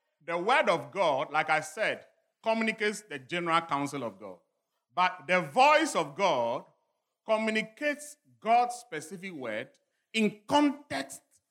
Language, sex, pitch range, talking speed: English, male, 145-220 Hz, 125 wpm